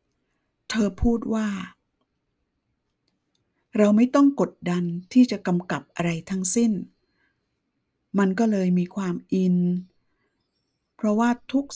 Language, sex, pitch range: Thai, female, 175-215 Hz